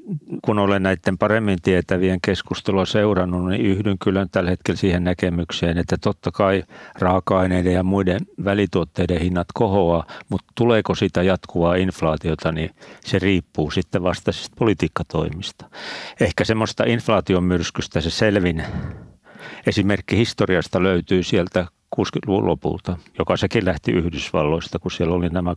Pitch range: 85-100 Hz